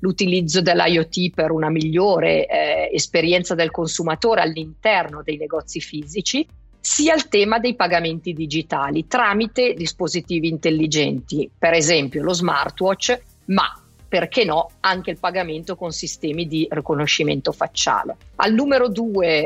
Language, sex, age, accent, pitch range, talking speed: Italian, female, 50-69, native, 165-220 Hz, 125 wpm